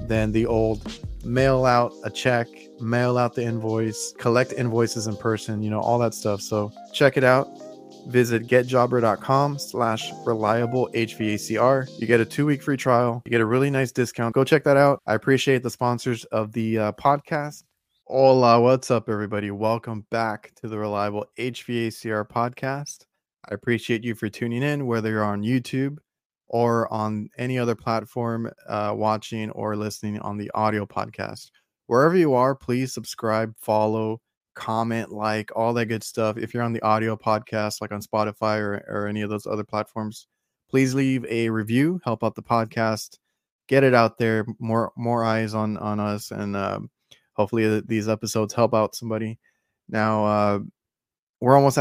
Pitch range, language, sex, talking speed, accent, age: 110-125 Hz, English, male, 170 wpm, American, 20-39